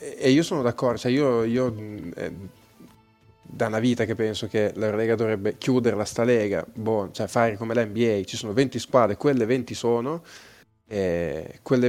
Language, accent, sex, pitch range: Italian, native, male, 110-125 Hz